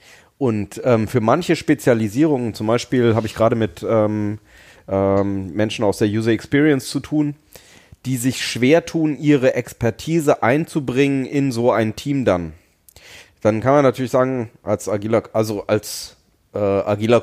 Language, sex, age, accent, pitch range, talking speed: German, male, 30-49, German, 105-130 Hz, 150 wpm